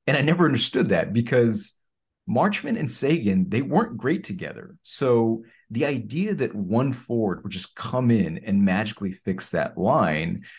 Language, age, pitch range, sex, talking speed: English, 30-49, 95-115 Hz, male, 160 wpm